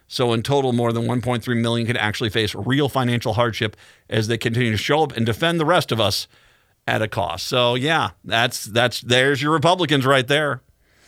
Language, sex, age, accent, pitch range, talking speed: English, male, 50-69, American, 115-145 Hz, 200 wpm